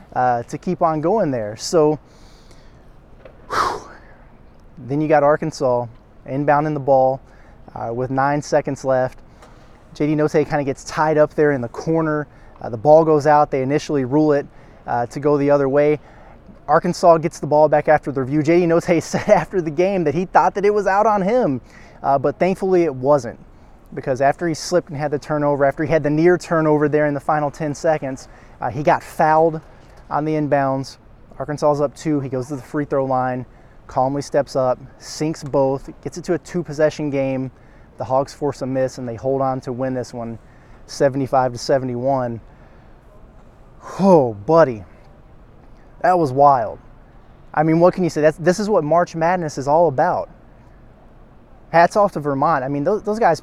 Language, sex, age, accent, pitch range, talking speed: English, male, 20-39, American, 130-160 Hz, 190 wpm